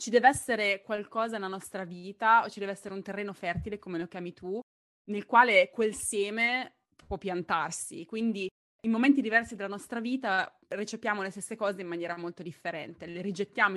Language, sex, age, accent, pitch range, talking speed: Italian, female, 20-39, native, 175-225 Hz, 180 wpm